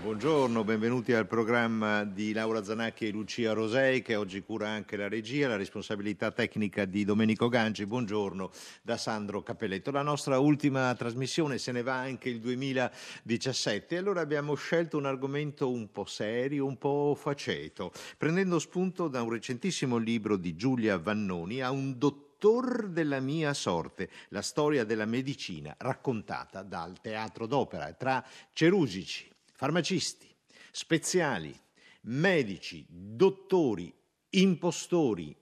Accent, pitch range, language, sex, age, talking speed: native, 105-140 Hz, Italian, male, 50-69, 130 wpm